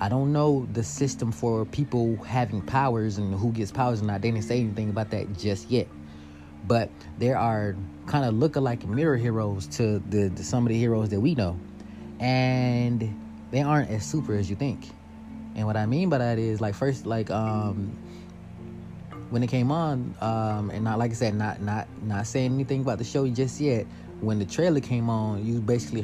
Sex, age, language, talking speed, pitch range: male, 20-39, English, 205 wpm, 100-125 Hz